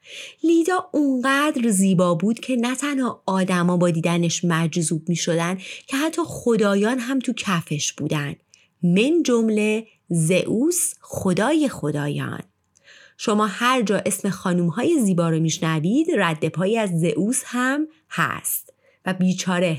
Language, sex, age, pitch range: Persian, female, 30-49, 170-285 Hz